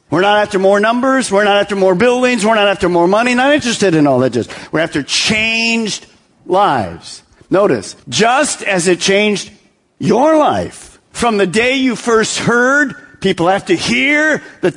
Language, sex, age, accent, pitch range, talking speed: English, male, 50-69, American, 175-240 Hz, 175 wpm